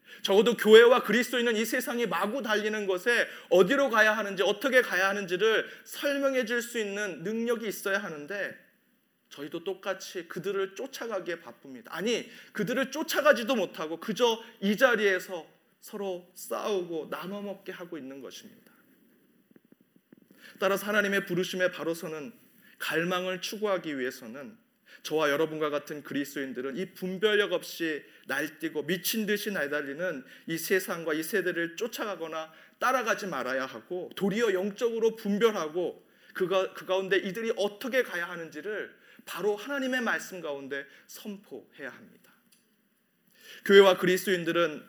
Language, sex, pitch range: Korean, male, 180-230 Hz